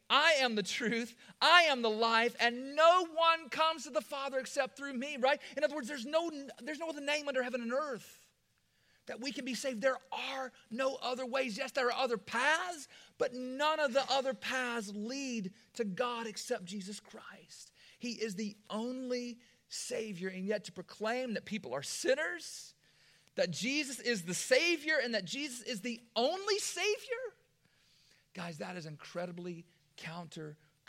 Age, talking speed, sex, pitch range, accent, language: 40-59, 175 wpm, male, 190-270 Hz, American, English